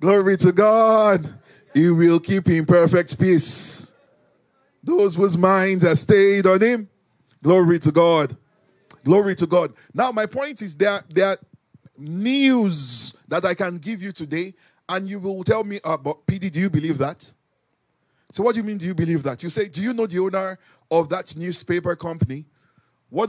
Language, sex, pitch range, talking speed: English, male, 155-210 Hz, 175 wpm